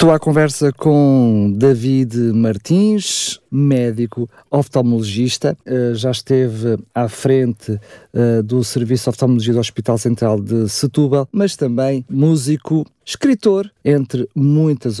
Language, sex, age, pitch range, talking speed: English, male, 50-69, 115-140 Hz, 110 wpm